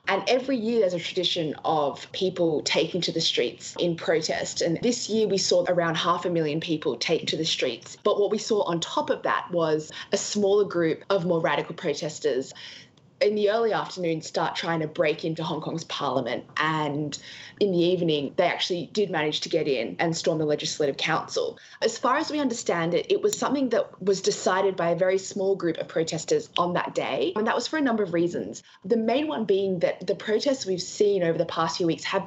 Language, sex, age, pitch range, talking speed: English, female, 20-39, 165-205 Hz, 220 wpm